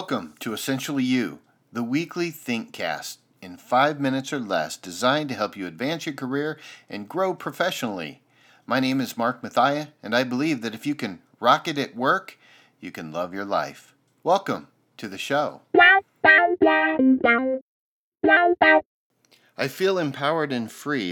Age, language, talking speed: 40-59, English, 150 wpm